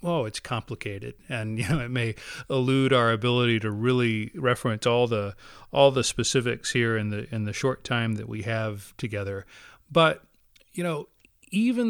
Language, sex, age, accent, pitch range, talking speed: English, male, 40-59, American, 110-130 Hz, 170 wpm